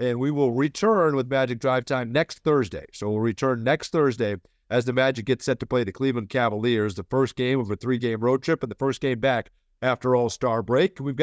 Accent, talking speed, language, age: American, 225 wpm, English, 50-69